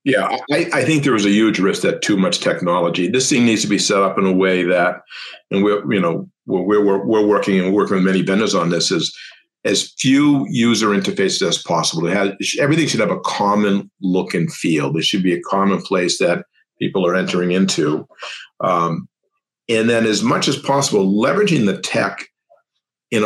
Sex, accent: male, American